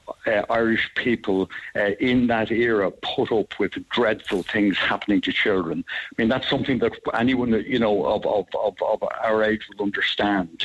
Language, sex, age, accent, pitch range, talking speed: English, male, 60-79, British, 100-120 Hz, 175 wpm